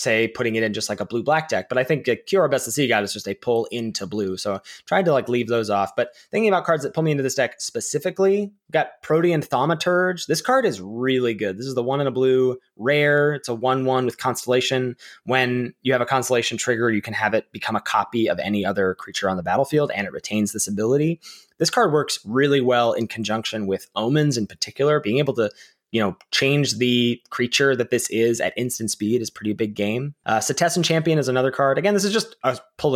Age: 20-39